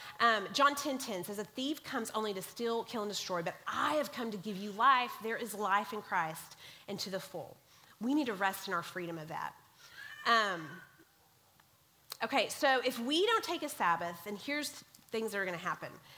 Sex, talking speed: female, 210 wpm